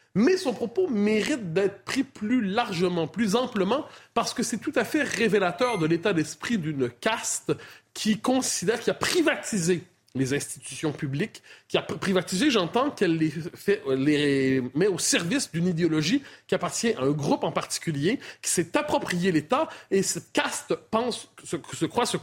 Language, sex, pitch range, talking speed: French, male, 150-230 Hz, 165 wpm